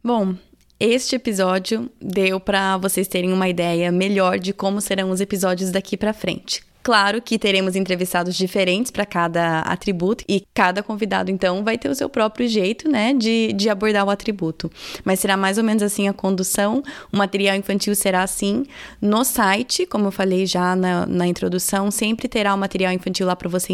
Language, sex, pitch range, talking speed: Portuguese, female, 180-205 Hz, 180 wpm